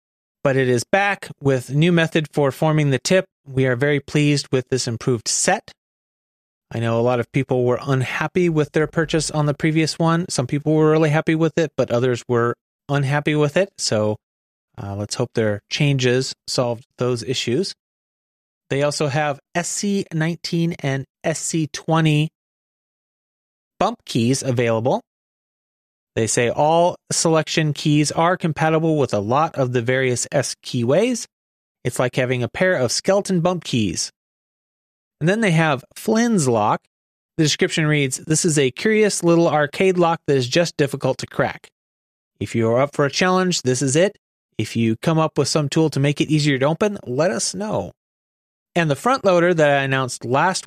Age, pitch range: 30-49, 125-165 Hz